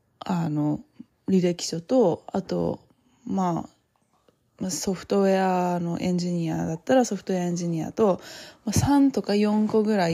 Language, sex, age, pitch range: Japanese, female, 20-39, 165-210 Hz